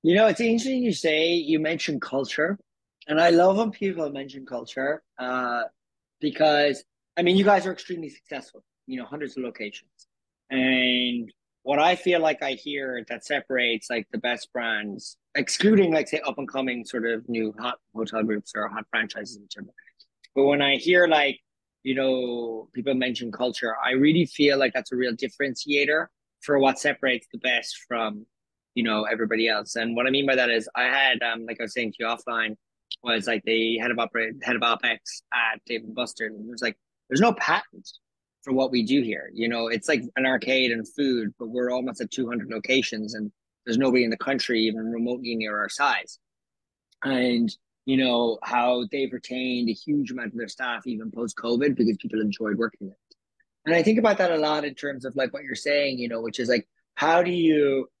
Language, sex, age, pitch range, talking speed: English, male, 30-49, 115-145 Hz, 200 wpm